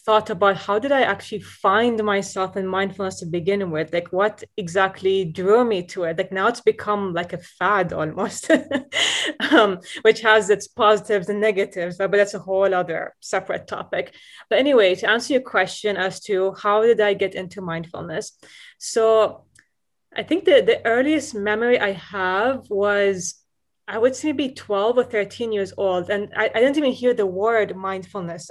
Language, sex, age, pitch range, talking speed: Arabic, female, 20-39, 190-220 Hz, 180 wpm